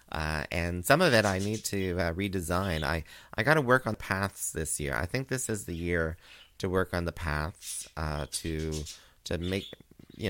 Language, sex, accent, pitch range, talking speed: English, male, American, 80-110 Hz, 205 wpm